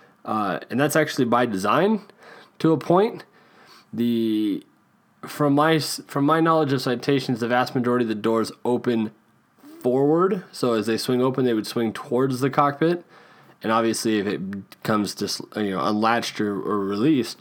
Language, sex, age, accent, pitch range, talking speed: English, male, 20-39, American, 115-155 Hz, 165 wpm